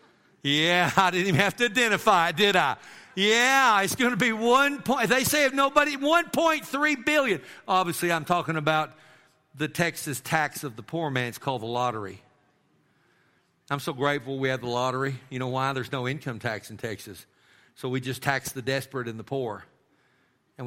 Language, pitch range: English, 135-185 Hz